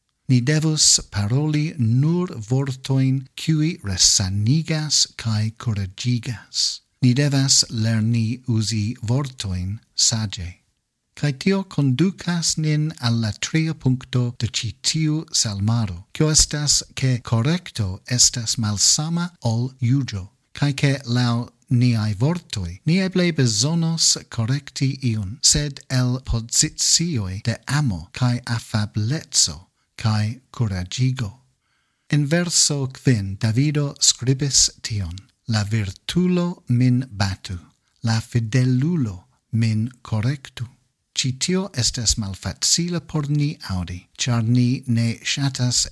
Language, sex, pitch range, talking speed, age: English, male, 110-145 Hz, 95 wpm, 50-69